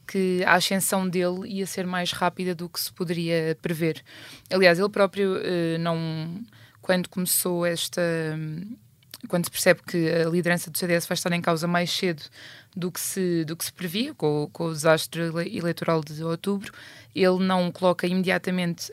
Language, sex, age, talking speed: Portuguese, female, 20-39, 170 wpm